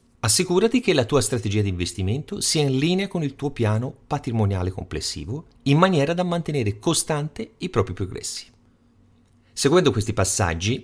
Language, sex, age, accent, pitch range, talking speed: Italian, male, 40-59, native, 95-135 Hz, 150 wpm